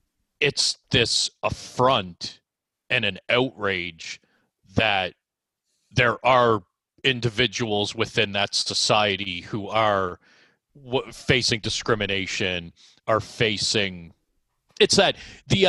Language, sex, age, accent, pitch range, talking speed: English, male, 30-49, American, 100-130 Hz, 90 wpm